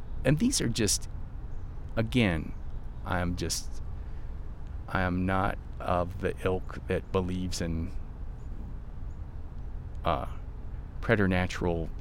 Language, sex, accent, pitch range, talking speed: English, male, American, 80-95 Hz, 95 wpm